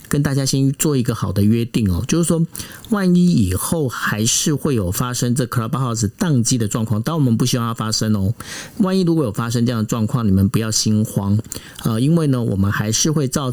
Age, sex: 50-69, male